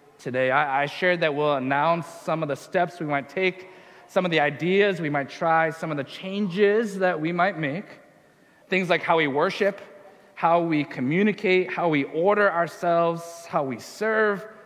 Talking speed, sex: 175 wpm, male